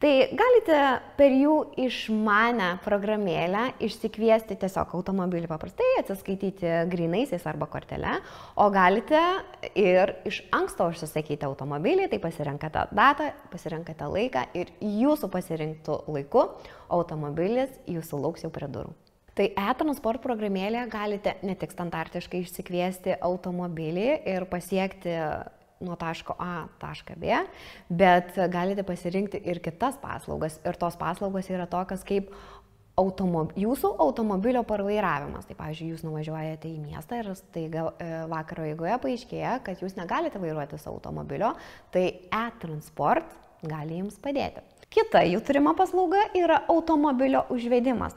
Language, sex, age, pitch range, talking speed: English, female, 20-39, 175-245 Hz, 120 wpm